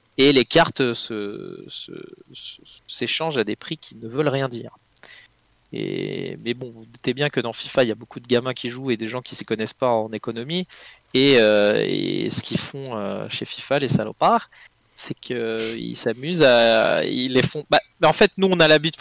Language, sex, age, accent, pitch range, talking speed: French, male, 20-39, French, 115-150 Hz, 220 wpm